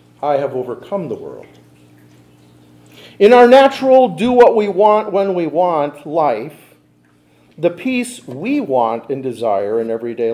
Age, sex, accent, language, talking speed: 50-69, male, American, English, 105 wpm